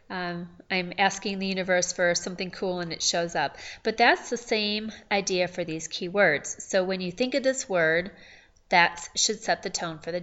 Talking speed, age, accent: 200 wpm, 30-49, American